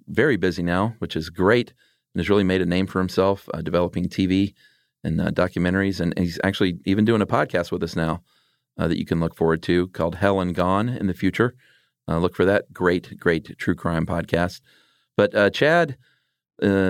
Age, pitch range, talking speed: 40-59, 85-100 Hz, 200 wpm